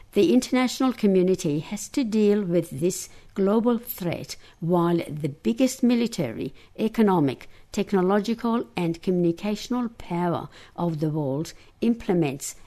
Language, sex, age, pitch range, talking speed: English, female, 60-79, 150-215 Hz, 110 wpm